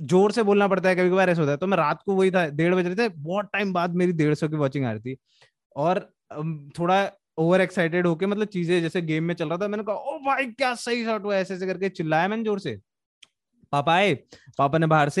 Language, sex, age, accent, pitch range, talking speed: Hindi, male, 20-39, native, 150-210 Hz, 135 wpm